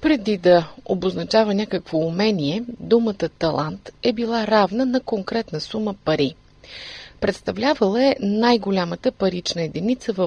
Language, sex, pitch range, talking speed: Bulgarian, female, 165-240 Hz, 115 wpm